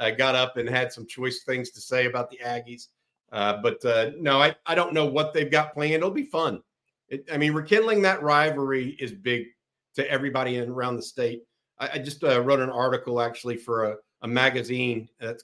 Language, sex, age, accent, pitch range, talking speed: English, male, 50-69, American, 125-160 Hz, 220 wpm